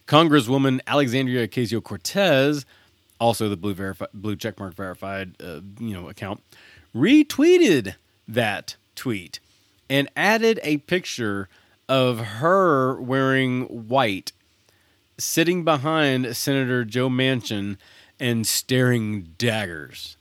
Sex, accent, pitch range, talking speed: male, American, 100-135 Hz, 100 wpm